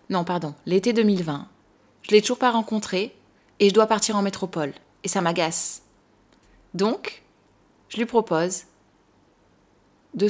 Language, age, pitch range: French, 20-39, 180-210 Hz